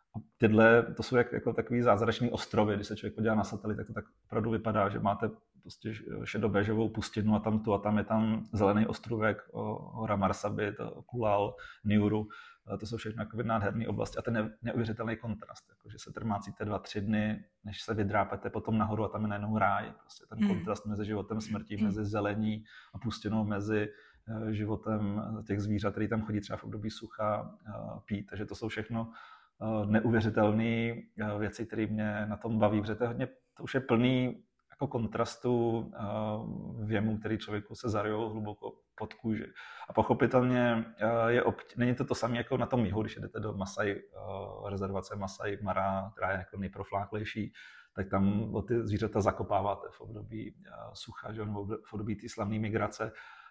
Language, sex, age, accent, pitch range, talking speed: Czech, male, 30-49, native, 105-115 Hz, 165 wpm